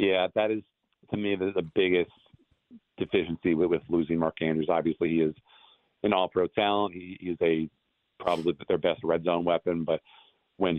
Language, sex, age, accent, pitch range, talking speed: English, male, 40-59, American, 80-90 Hz, 160 wpm